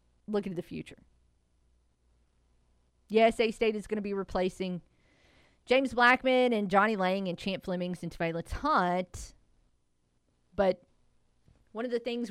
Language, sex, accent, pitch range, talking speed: English, female, American, 145-230 Hz, 130 wpm